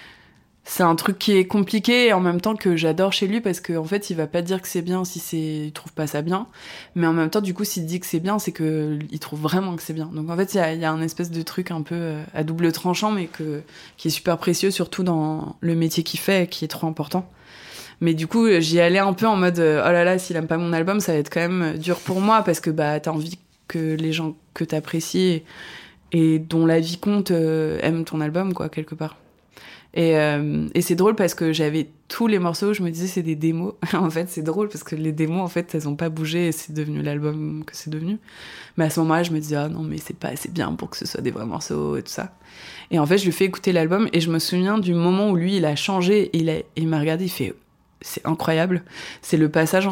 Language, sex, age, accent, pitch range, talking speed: French, female, 20-39, French, 155-185 Hz, 275 wpm